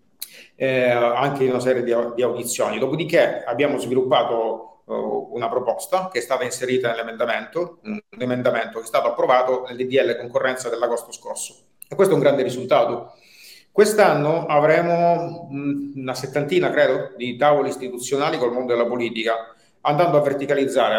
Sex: male